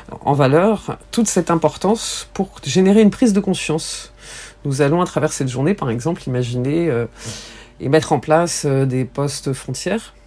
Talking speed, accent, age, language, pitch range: 170 wpm, French, 40-59, French, 135-170 Hz